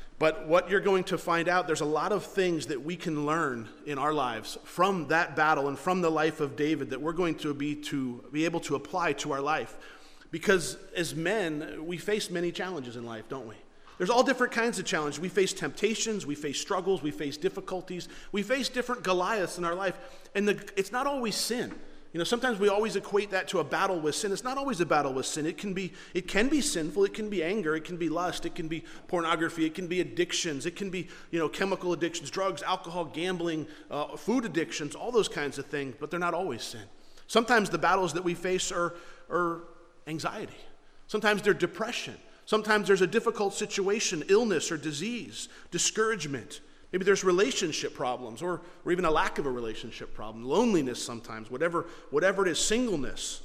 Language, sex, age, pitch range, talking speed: English, male, 40-59, 155-200 Hz, 210 wpm